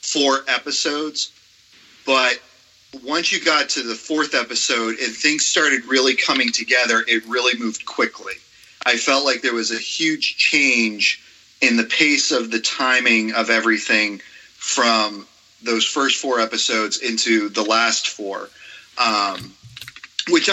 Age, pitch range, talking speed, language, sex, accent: 30-49, 110-130 Hz, 135 wpm, English, male, American